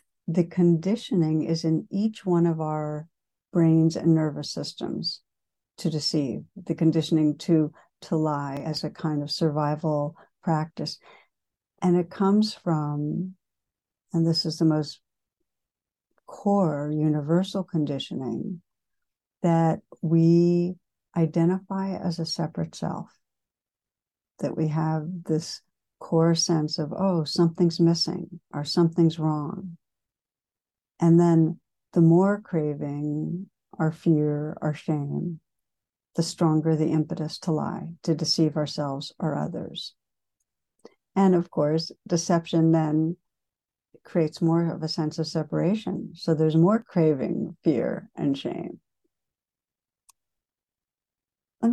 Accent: American